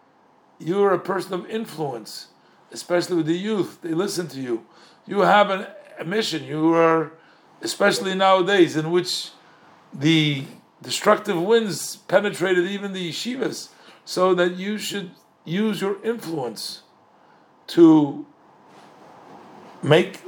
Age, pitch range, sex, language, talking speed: 60-79, 155-195 Hz, male, English, 115 wpm